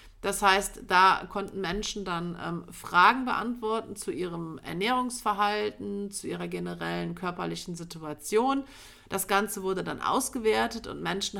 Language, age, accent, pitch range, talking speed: German, 40-59, German, 170-205 Hz, 125 wpm